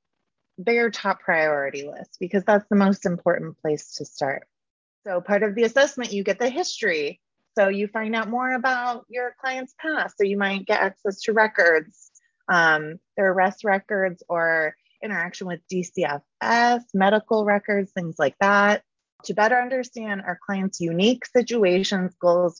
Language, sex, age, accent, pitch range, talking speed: English, female, 30-49, American, 175-235 Hz, 155 wpm